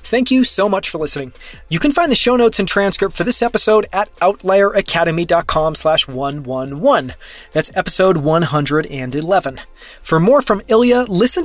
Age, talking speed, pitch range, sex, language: 30-49, 150 wpm, 155-205 Hz, male, English